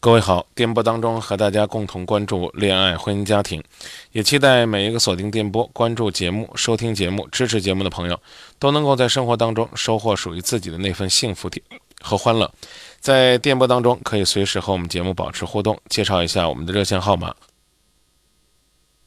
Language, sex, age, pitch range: Chinese, male, 20-39, 90-115 Hz